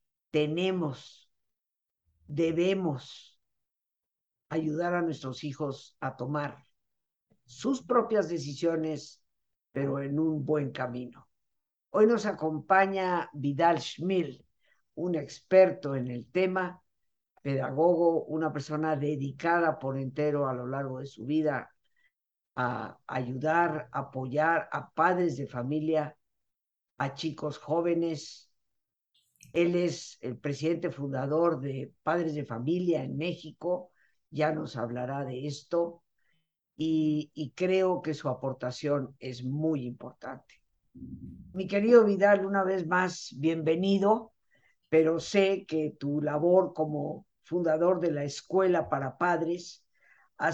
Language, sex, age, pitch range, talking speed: Spanish, female, 50-69, 135-170 Hz, 110 wpm